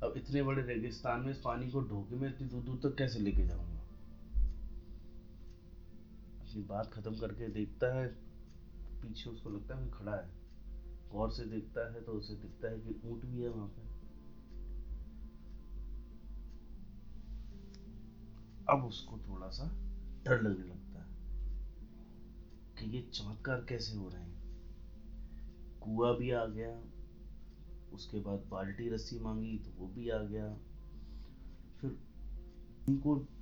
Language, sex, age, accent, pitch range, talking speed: Hindi, male, 30-49, native, 90-120 Hz, 130 wpm